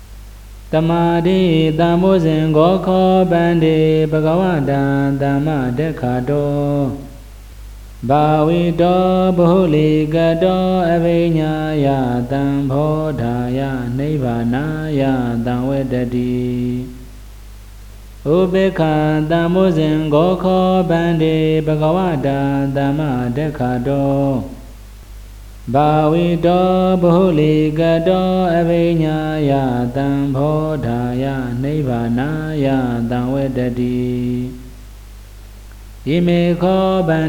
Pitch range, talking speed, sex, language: 125-160 Hz, 55 wpm, male, Vietnamese